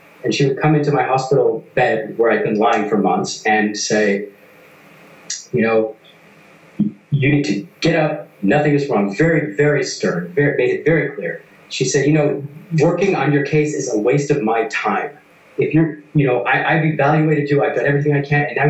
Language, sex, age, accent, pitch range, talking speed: English, male, 30-49, American, 110-155 Hz, 200 wpm